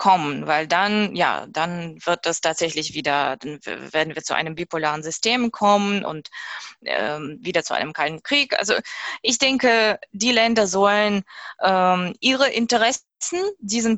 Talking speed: 145 wpm